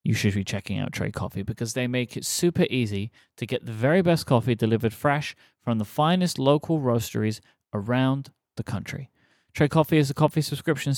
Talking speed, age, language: 190 wpm, 30-49, English